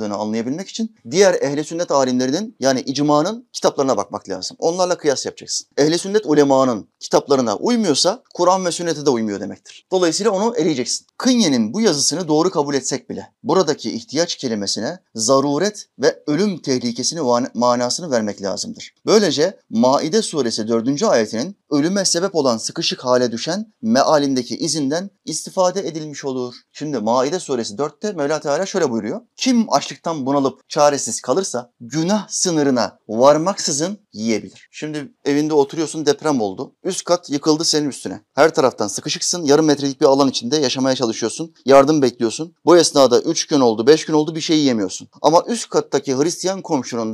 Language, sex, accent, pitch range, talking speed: Turkish, male, native, 130-185 Hz, 150 wpm